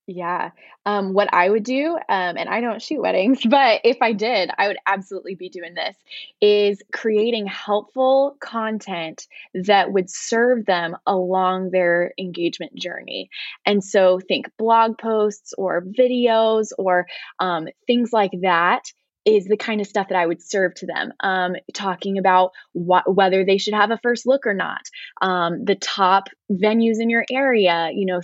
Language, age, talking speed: English, 10-29, 170 wpm